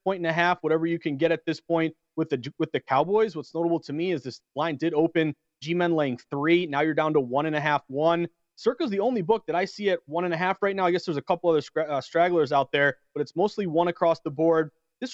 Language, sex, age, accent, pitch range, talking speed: English, male, 30-49, American, 155-190 Hz, 280 wpm